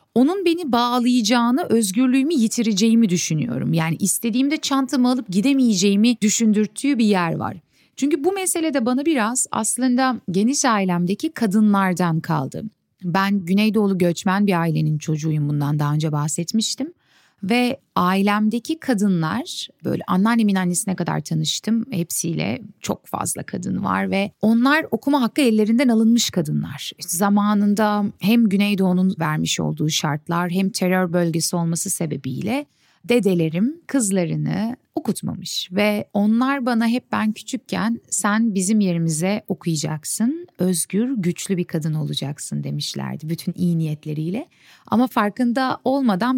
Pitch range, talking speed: 175-240 Hz, 120 wpm